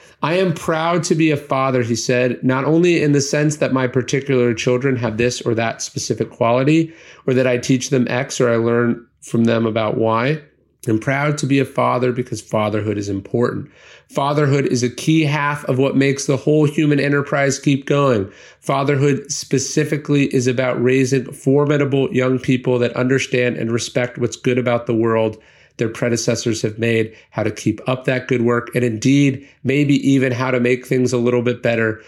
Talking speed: 190 wpm